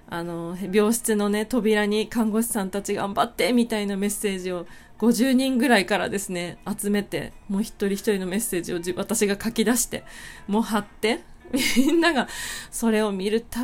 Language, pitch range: Japanese, 185-230 Hz